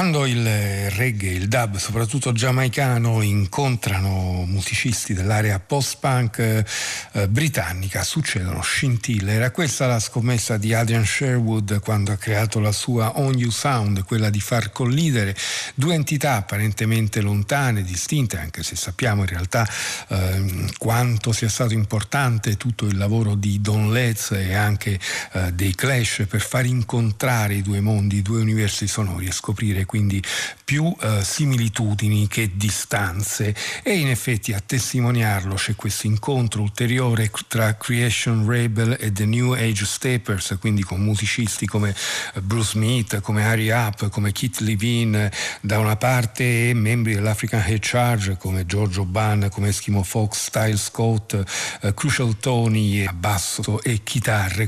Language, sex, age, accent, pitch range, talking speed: Italian, male, 50-69, native, 105-125 Hz, 145 wpm